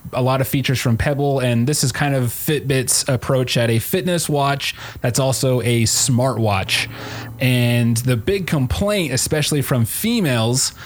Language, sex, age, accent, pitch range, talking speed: English, male, 30-49, American, 115-135 Hz, 160 wpm